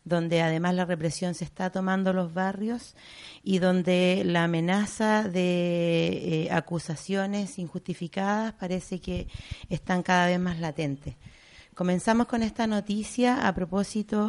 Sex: female